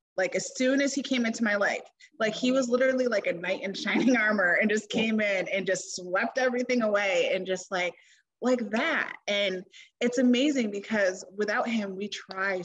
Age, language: 30-49, English